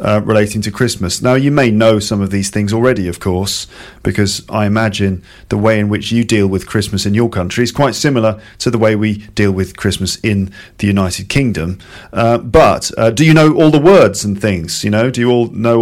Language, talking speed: English, 230 wpm